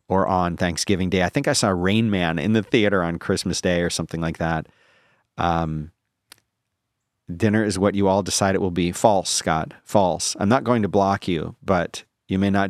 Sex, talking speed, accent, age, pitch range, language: male, 205 wpm, American, 40-59, 85-110 Hz, English